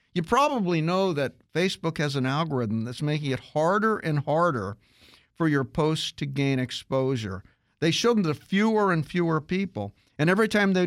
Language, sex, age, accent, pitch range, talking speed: English, male, 50-69, American, 125-180 Hz, 175 wpm